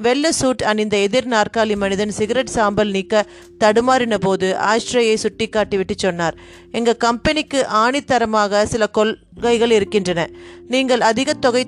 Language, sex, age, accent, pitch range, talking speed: Tamil, female, 30-49, native, 205-250 Hz, 125 wpm